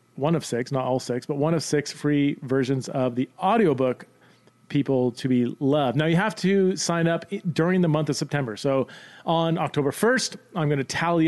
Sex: male